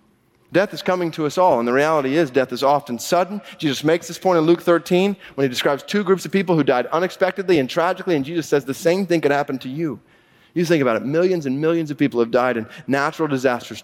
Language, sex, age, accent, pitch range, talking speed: English, male, 30-49, American, 130-170 Hz, 245 wpm